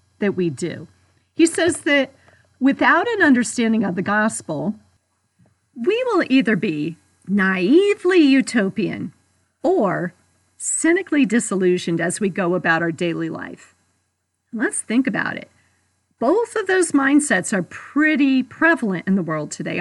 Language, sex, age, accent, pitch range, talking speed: English, female, 40-59, American, 165-265 Hz, 130 wpm